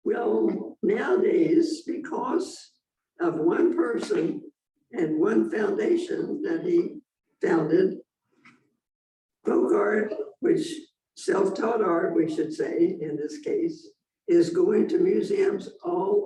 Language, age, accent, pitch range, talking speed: English, 60-79, American, 340-390 Hz, 105 wpm